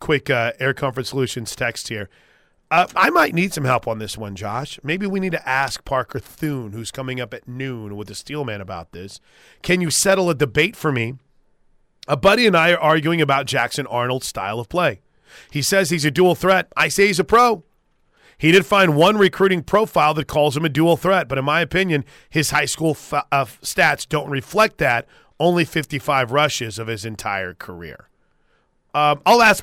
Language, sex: English, male